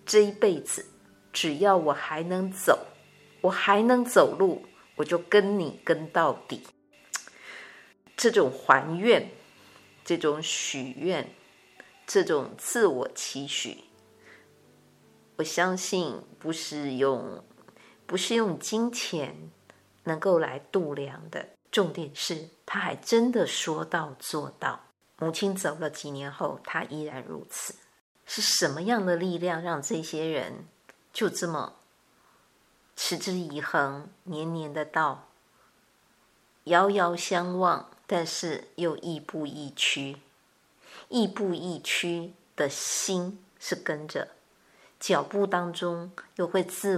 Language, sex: Chinese, female